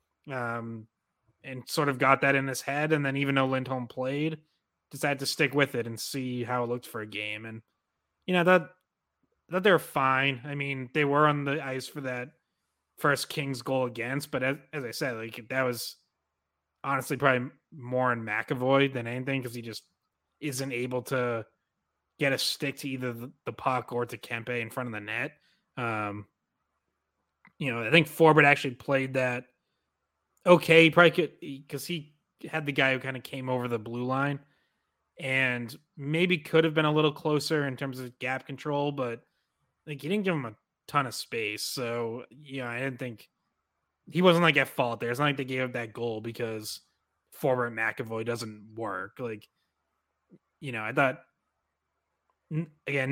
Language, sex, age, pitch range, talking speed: English, male, 20-39, 120-145 Hz, 185 wpm